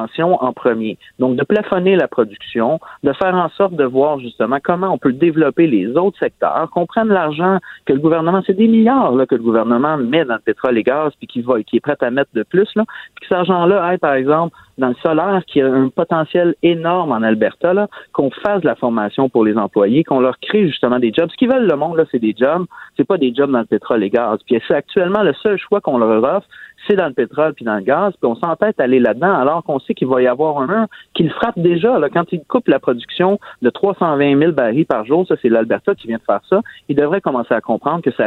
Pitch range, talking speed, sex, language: 130-195 Hz, 245 wpm, male, French